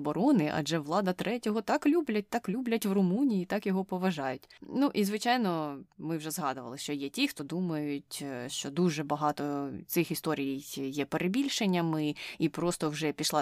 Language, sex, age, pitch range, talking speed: Ukrainian, female, 20-39, 155-195 Hz, 155 wpm